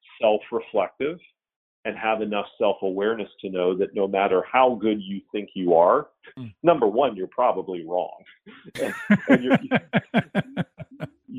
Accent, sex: American, male